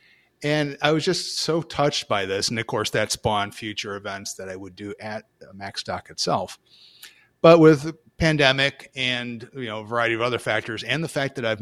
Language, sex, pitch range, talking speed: English, male, 110-150 Hz, 200 wpm